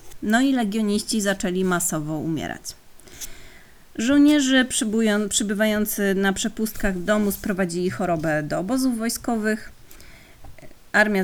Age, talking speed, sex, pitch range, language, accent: 30-49, 90 wpm, female, 175-230 Hz, Polish, native